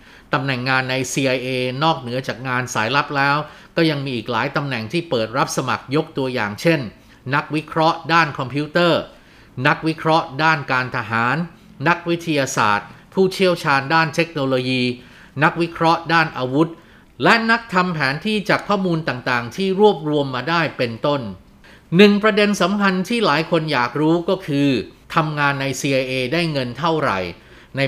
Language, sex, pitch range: Thai, male, 125-165 Hz